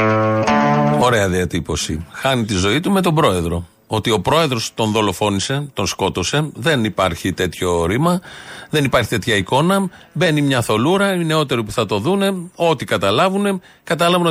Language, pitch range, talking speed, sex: Greek, 100-145 Hz, 150 wpm, male